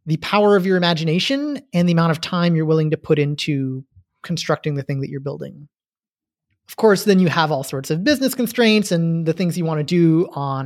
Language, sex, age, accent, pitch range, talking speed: English, male, 30-49, American, 145-190 Hz, 220 wpm